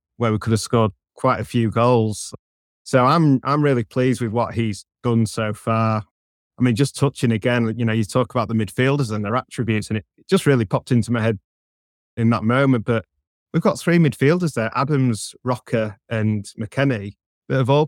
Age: 20-39